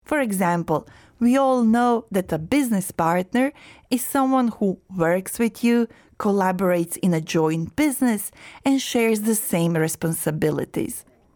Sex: female